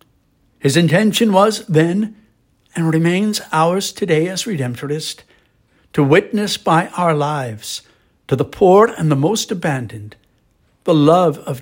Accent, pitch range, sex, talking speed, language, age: American, 120-195 Hz, male, 130 wpm, English, 60-79